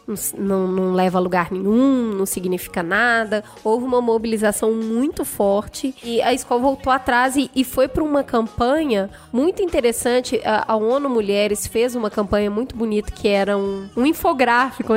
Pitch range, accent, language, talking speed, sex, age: 215-265 Hz, Brazilian, Portuguese, 165 wpm, female, 10-29